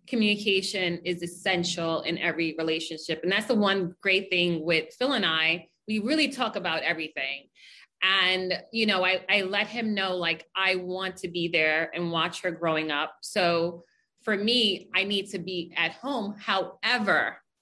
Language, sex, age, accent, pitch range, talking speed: English, female, 30-49, American, 170-225 Hz, 170 wpm